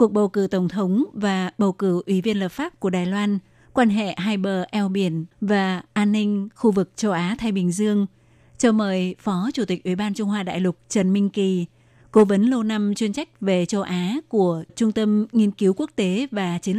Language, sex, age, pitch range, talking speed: Vietnamese, female, 20-39, 185-220 Hz, 225 wpm